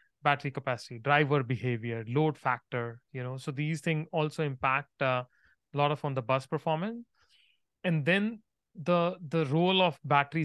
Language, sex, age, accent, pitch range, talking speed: English, male, 30-49, Indian, 130-155 Hz, 150 wpm